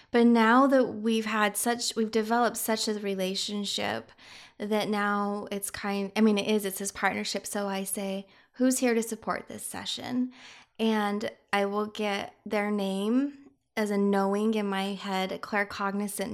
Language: English